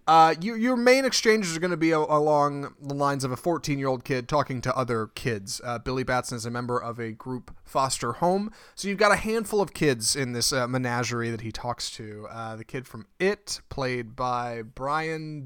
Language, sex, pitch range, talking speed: English, male, 120-155 Hz, 220 wpm